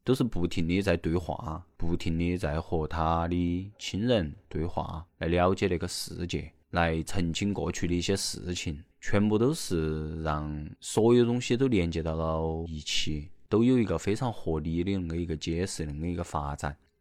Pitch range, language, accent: 80-100 Hz, Chinese, native